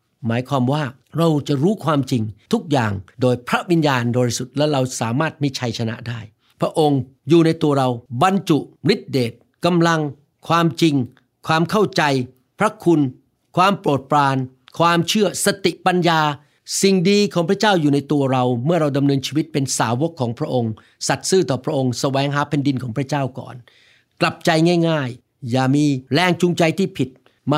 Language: Thai